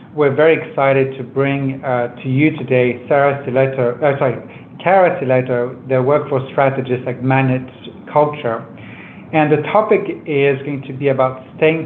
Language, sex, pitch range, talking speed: English, male, 130-150 Hz, 160 wpm